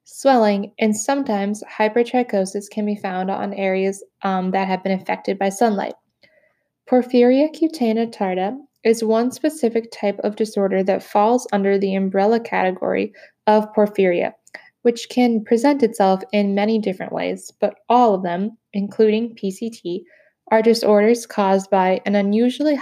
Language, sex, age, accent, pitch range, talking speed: English, female, 10-29, American, 195-230 Hz, 140 wpm